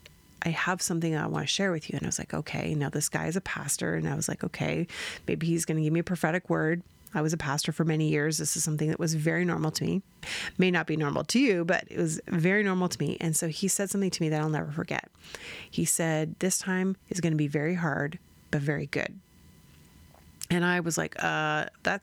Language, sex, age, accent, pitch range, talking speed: English, female, 30-49, American, 155-185 Hz, 255 wpm